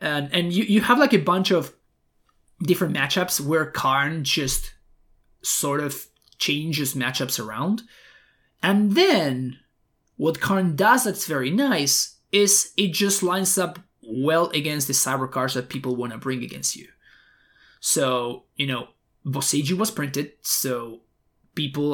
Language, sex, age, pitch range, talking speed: English, male, 20-39, 130-160 Hz, 140 wpm